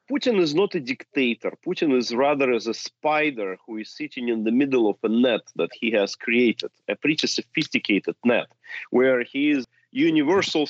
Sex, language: male, English